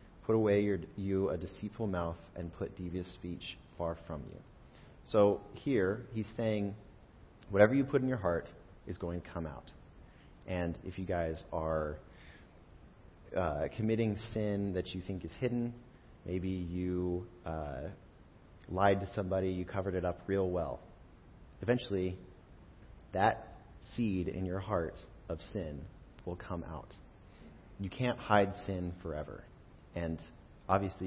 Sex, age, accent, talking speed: male, 30-49, American, 135 wpm